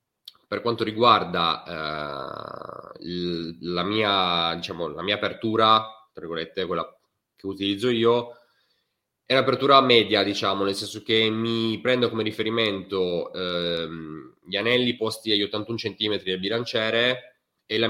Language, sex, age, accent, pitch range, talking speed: Italian, male, 30-49, native, 95-115 Hz, 120 wpm